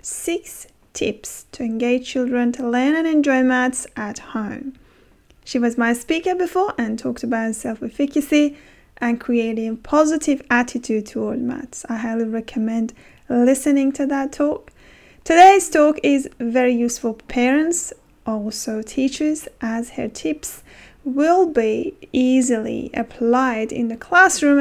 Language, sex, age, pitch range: English, female, 30-49, 230-285 Hz